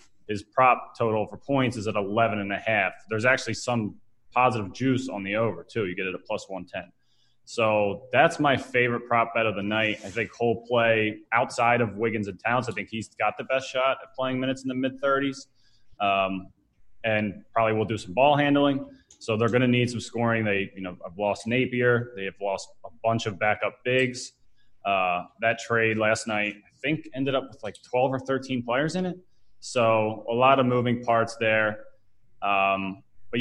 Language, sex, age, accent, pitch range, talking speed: English, male, 20-39, American, 105-135 Hz, 205 wpm